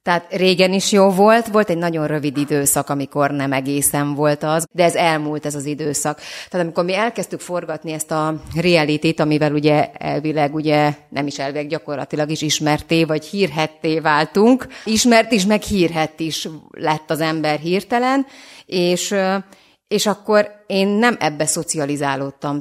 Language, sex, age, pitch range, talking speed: Hungarian, female, 30-49, 150-185 Hz, 155 wpm